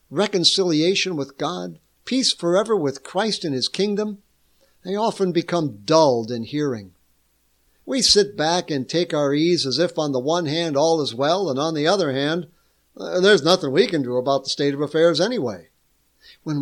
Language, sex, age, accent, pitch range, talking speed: English, male, 60-79, American, 130-195 Hz, 175 wpm